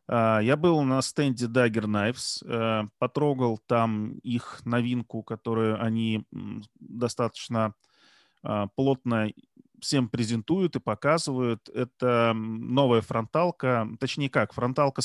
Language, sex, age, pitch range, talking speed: Russian, male, 30-49, 115-135 Hz, 95 wpm